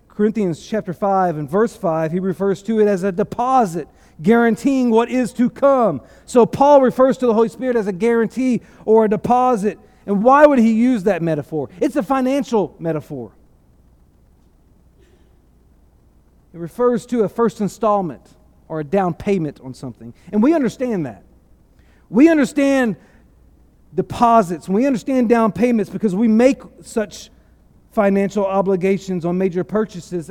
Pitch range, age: 175-235 Hz, 40-59